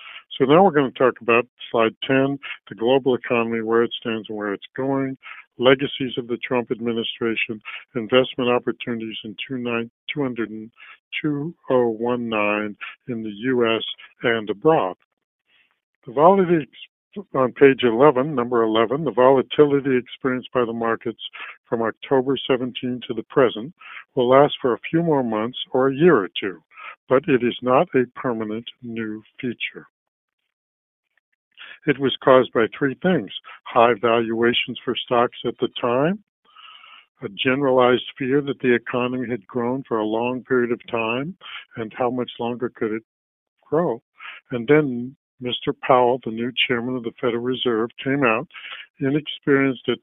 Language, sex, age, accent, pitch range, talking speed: English, male, 60-79, American, 115-135 Hz, 145 wpm